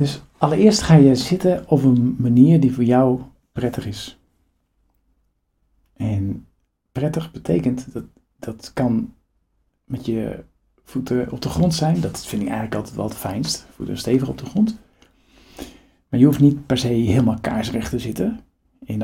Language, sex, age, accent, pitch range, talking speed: Dutch, male, 50-69, Dutch, 95-135 Hz, 160 wpm